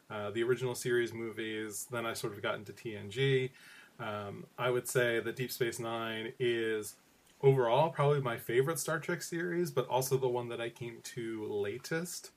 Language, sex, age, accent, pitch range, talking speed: English, male, 20-39, American, 110-130 Hz, 180 wpm